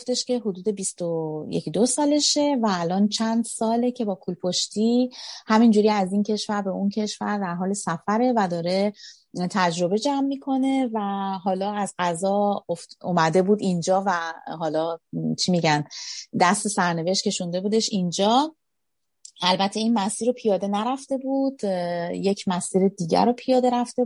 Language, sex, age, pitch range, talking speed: Persian, female, 30-49, 185-235 Hz, 145 wpm